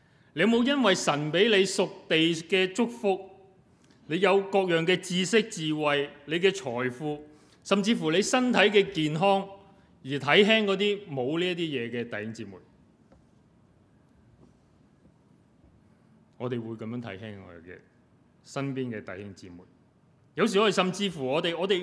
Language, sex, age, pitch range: Chinese, male, 30-49, 135-195 Hz